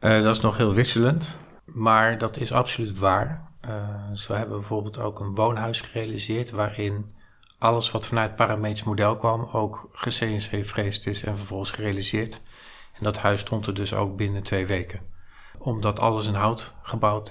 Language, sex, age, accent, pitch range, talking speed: Dutch, male, 40-59, Dutch, 105-115 Hz, 165 wpm